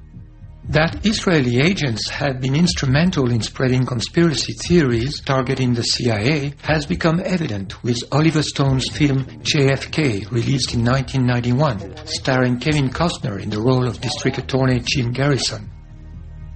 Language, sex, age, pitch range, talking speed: English, male, 60-79, 120-145 Hz, 125 wpm